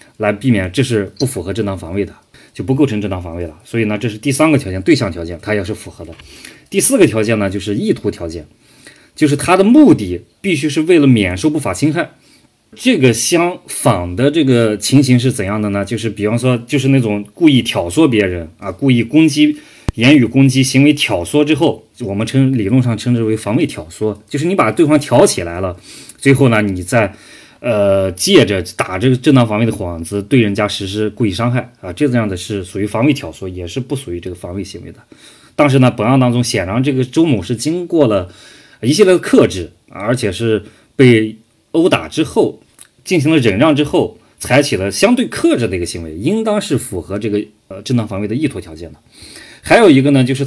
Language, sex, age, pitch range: Chinese, male, 20-39, 100-145 Hz